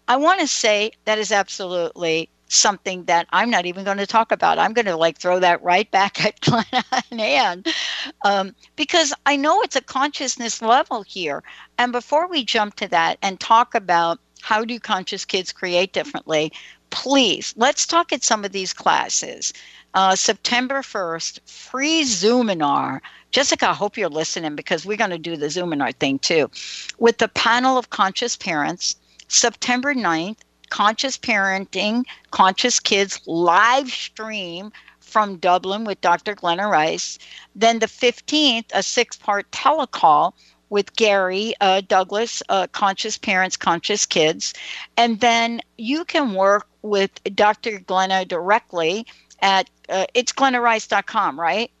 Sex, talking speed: female, 145 wpm